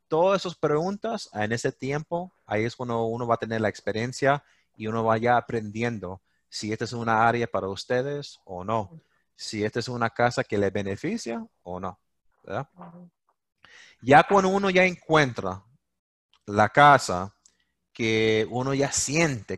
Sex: male